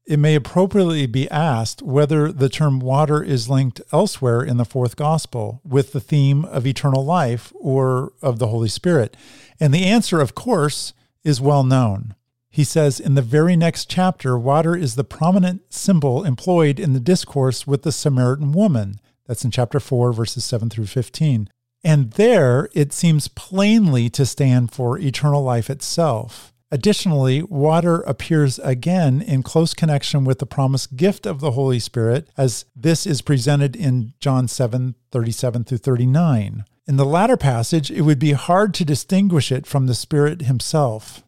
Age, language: 50-69, English